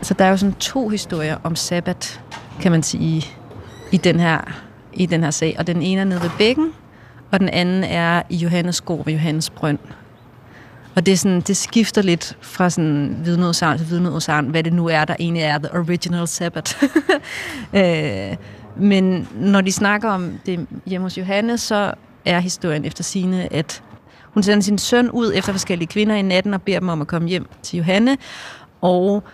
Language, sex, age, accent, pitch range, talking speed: Danish, female, 30-49, native, 160-195 Hz, 190 wpm